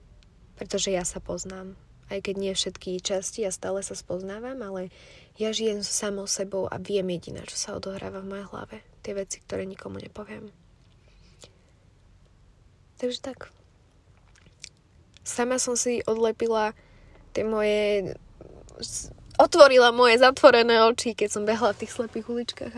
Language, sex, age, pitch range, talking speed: Slovak, female, 20-39, 180-230 Hz, 135 wpm